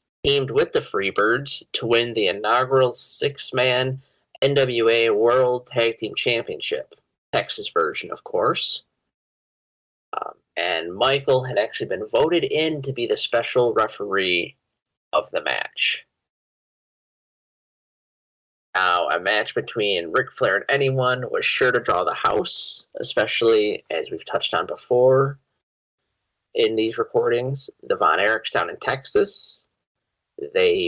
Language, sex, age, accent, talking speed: English, male, 30-49, American, 120 wpm